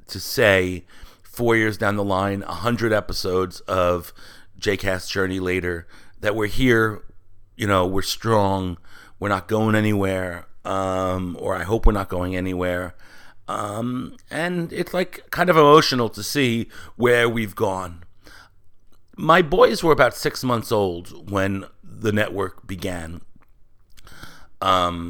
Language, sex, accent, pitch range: English, male, American, 90-105 Hz